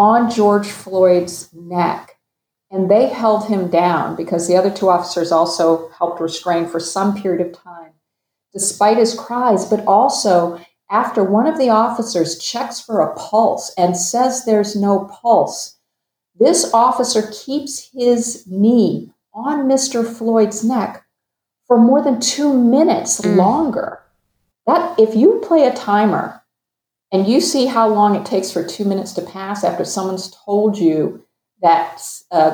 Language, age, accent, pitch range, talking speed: English, 50-69, American, 175-225 Hz, 150 wpm